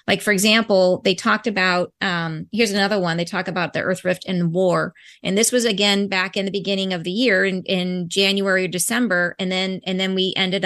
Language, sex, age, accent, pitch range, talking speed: English, female, 30-49, American, 185-220 Hz, 225 wpm